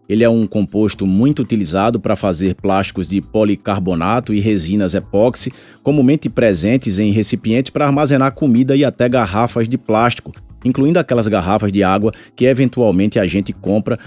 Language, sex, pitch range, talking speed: Portuguese, male, 100-120 Hz, 155 wpm